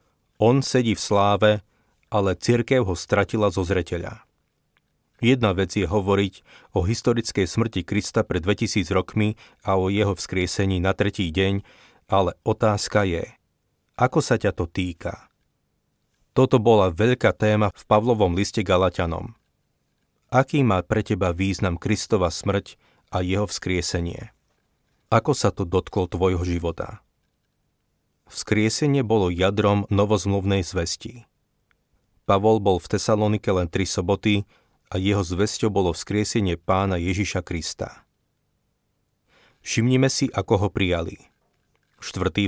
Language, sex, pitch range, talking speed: Slovak, male, 95-110 Hz, 120 wpm